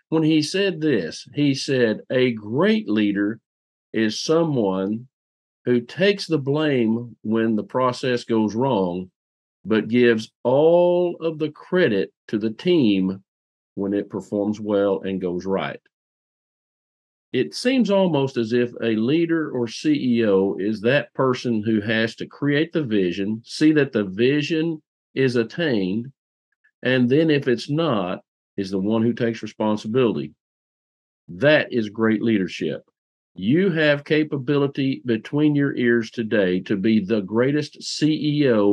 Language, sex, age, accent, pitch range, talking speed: English, male, 50-69, American, 105-145 Hz, 135 wpm